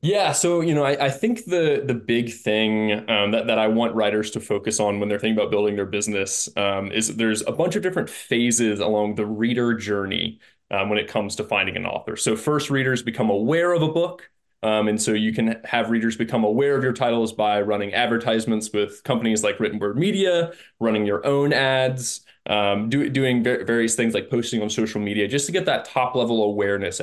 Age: 20-39